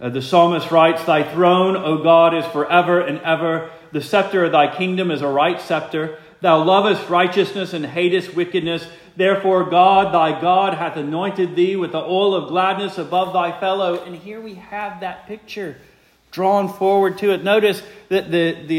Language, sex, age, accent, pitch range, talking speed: English, male, 40-59, American, 125-185 Hz, 180 wpm